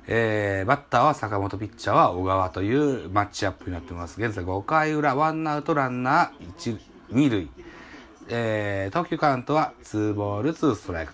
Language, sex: Japanese, male